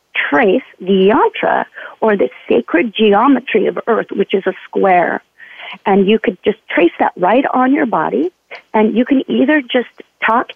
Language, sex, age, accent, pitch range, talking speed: English, female, 40-59, American, 200-255 Hz, 165 wpm